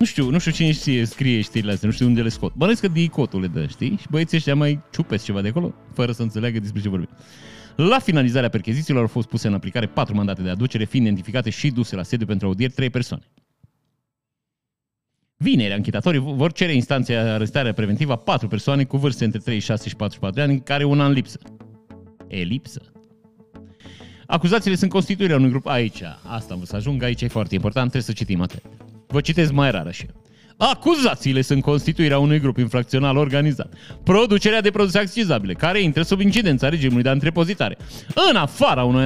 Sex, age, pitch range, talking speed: male, 30-49, 115-165 Hz, 190 wpm